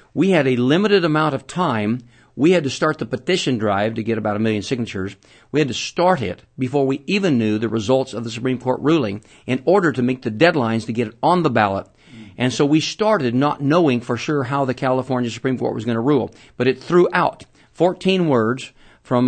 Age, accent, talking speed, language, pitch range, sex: 50-69, American, 225 wpm, English, 115-145 Hz, male